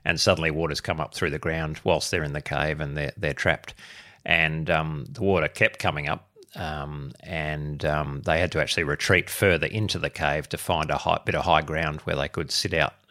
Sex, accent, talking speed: male, Australian, 225 wpm